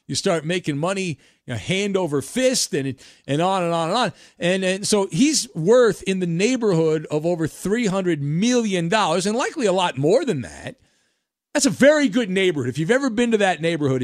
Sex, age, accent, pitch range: male, 40-59, American, 140-210 Hz